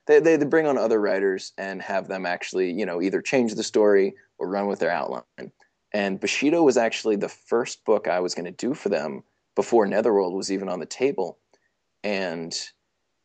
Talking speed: 195 wpm